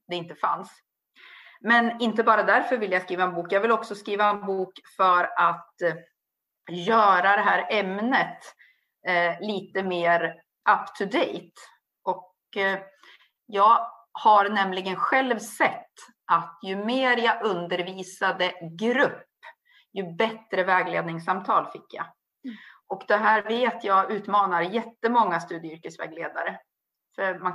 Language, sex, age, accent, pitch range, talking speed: Swedish, female, 30-49, native, 175-220 Hz, 115 wpm